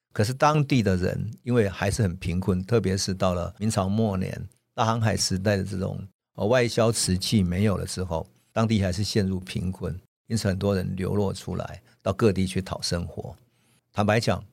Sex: male